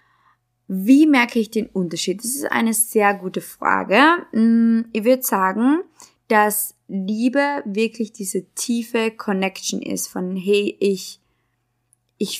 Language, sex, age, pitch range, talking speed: German, female, 20-39, 195-235 Hz, 120 wpm